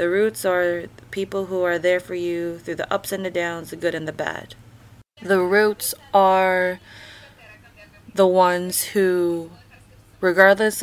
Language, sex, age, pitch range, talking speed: English, female, 20-39, 115-185 Hz, 155 wpm